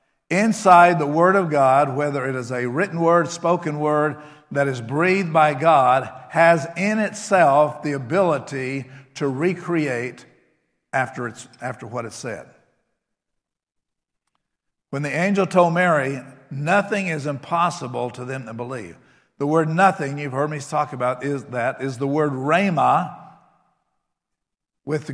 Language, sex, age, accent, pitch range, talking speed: English, male, 50-69, American, 135-170 Hz, 140 wpm